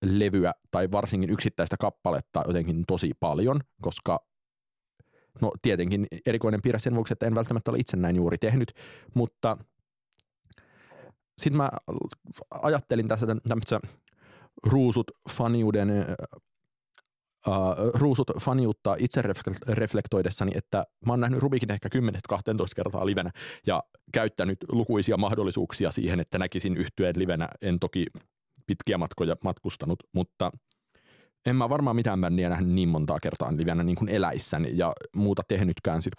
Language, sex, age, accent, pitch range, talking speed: Finnish, male, 30-49, native, 90-115 Hz, 125 wpm